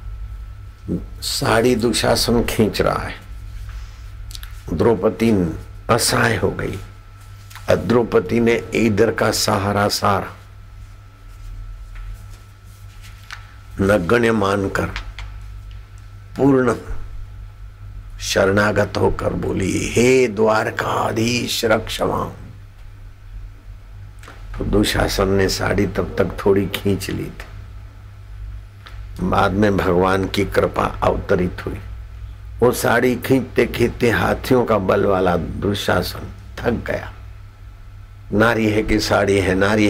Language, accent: Hindi, native